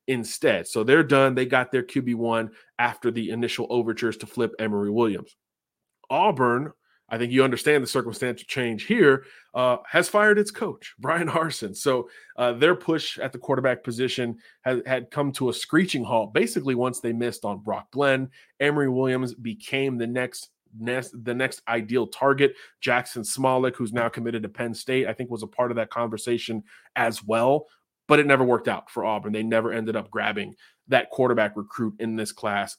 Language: English